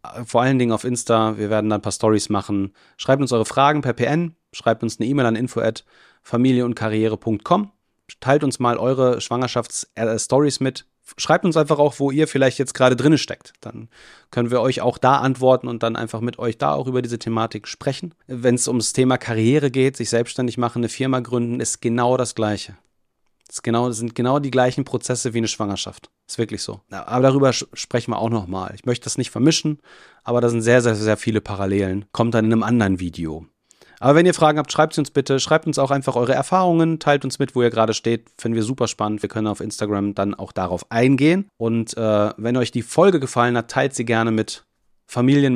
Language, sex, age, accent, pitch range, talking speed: German, male, 30-49, German, 110-130 Hz, 210 wpm